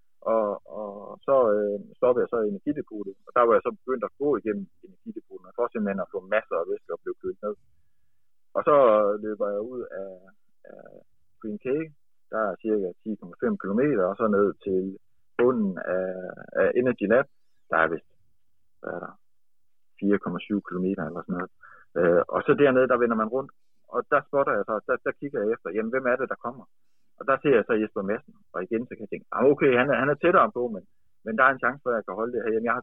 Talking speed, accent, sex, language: 215 wpm, native, male, Danish